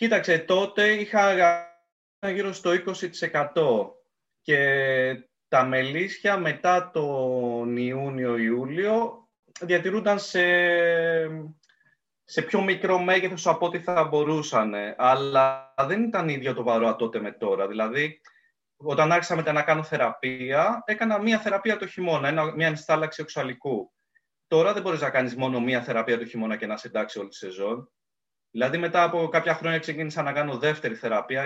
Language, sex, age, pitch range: Greek, male, 30-49, 130-190 Hz